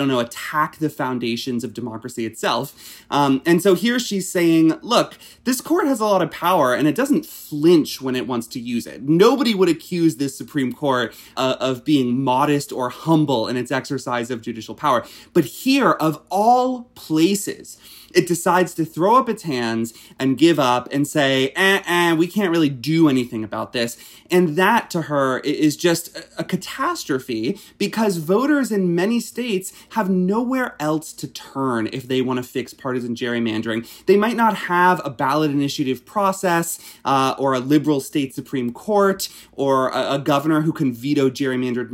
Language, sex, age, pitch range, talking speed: English, male, 30-49, 130-190 Hz, 175 wpm